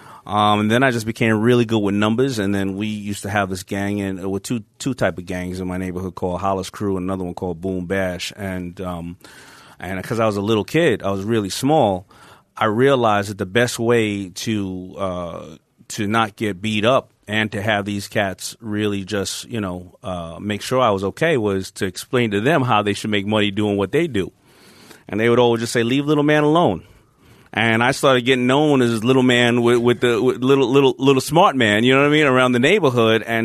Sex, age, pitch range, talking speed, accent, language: male, 30-49, 100-120 Hz, 235 wpm, American, English